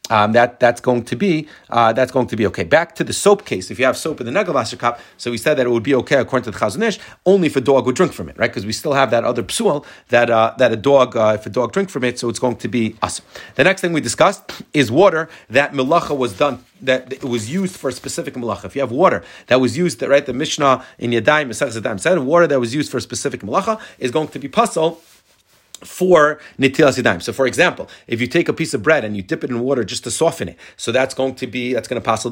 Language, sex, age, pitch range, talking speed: English, male, 30-49, 120-150 Hz, 275 wpm